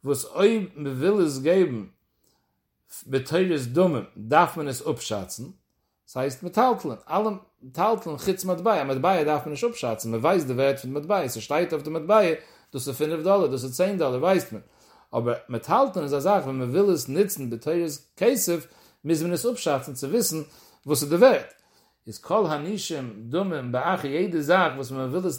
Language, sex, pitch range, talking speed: English, male, 135-185 Hz, 50 wpm